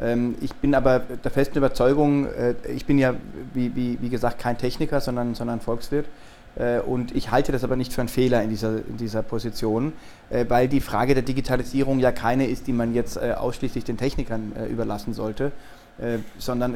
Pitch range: 120-135 Hz